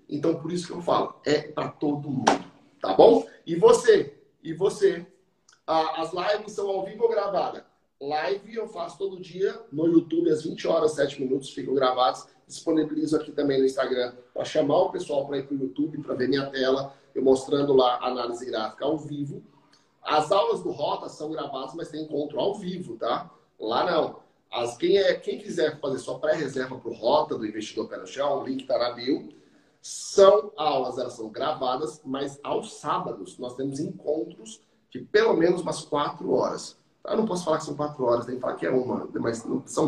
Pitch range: 140-205 Hz